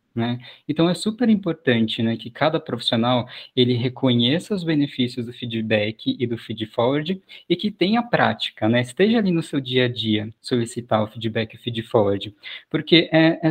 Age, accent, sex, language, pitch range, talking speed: 20-39, Brazilian, male, Portuguese, 120-165 Hz, 175 wpm